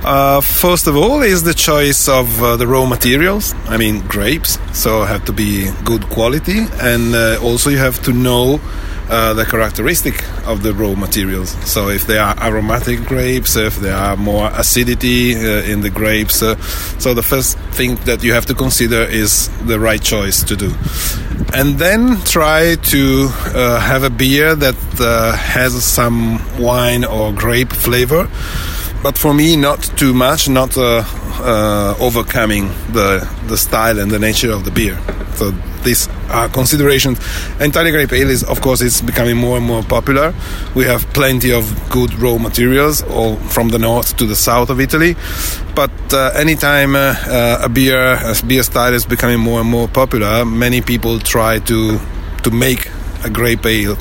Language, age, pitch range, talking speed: Dutch, 30-49, 105-125 Hz, 180 wpm